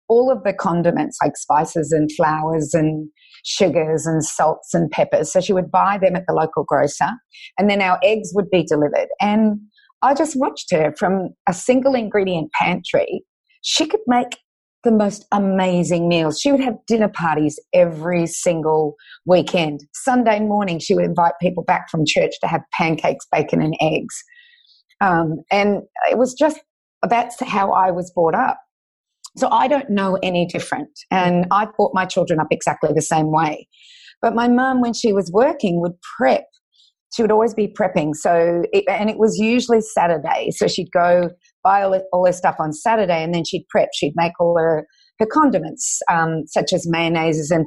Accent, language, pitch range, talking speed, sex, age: Australian, English, 170-230 Hz, 180 wpm, female, 30-49